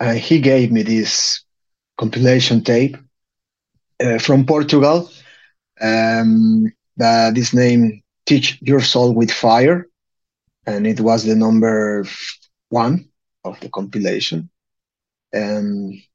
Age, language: 30-49, English